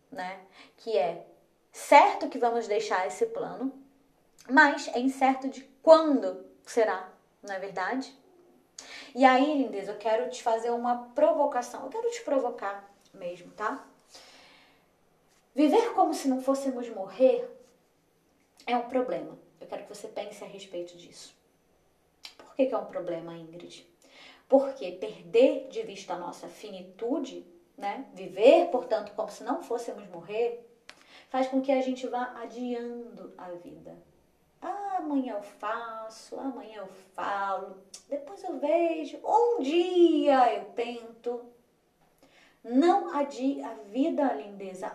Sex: female